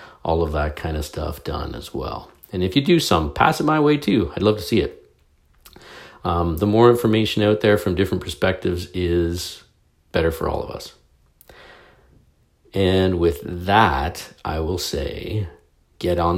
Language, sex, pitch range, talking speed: English, male, 80-105 Hz, 170 wpm